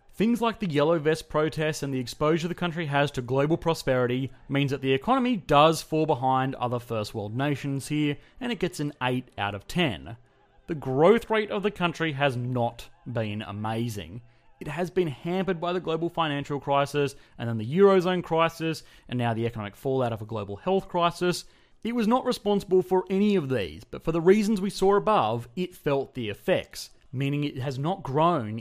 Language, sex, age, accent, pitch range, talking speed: English, male, 30-49, Australian, 125-180 Hz, 195 wpm